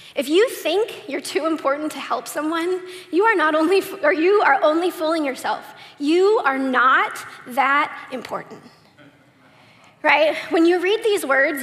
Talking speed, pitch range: 155 wpm, 305-395 Hz